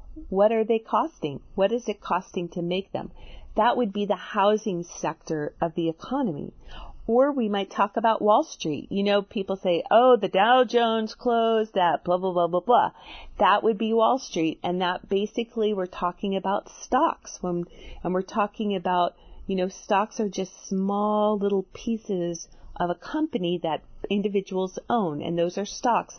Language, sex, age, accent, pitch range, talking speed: English, female, 40-59, American, 175-225 Hz, 175 wpm